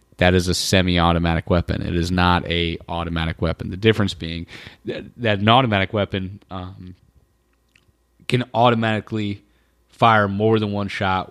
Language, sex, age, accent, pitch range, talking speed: English, male, 30-49, American, 90-110 Hz, 145 wpm